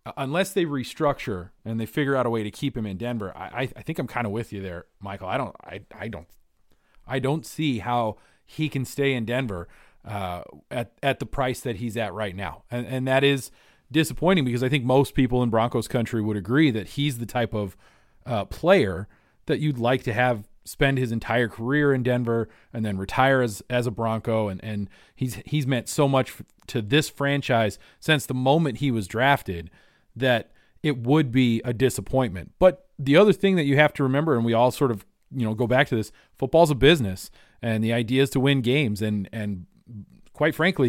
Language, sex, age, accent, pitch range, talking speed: English, male, 40-59, American, 110-145 Hz, 210 wpm